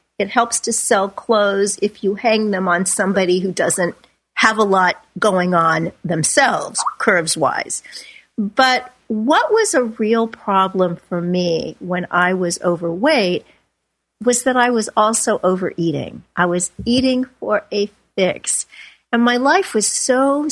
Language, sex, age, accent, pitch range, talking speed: English, female, 50-69, American, 185-255 Hz, 145 wpm